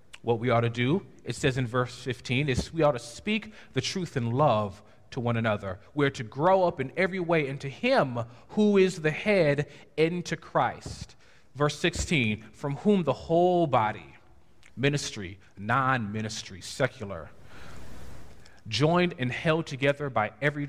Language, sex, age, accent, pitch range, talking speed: English, male, 40-59, American, 115-155 Hz, 155 wpm